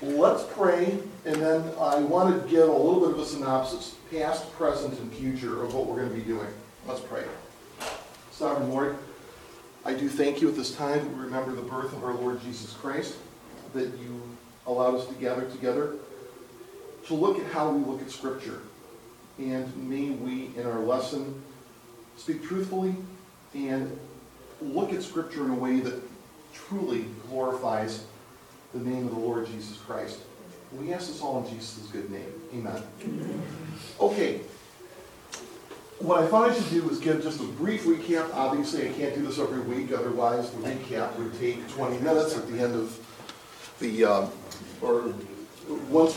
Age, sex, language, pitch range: 40-59, male, English, 125-165 Hz